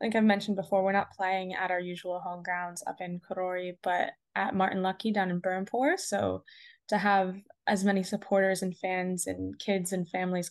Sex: female